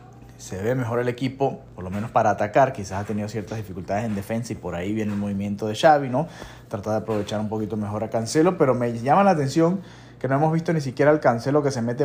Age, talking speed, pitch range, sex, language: 30-49, 250 wpm, 100-125 Hz, male, Spanish